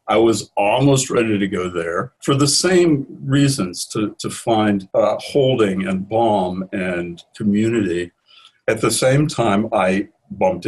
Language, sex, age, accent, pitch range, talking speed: English, male, 60-79, American, 95-115 Hz, 145 wpm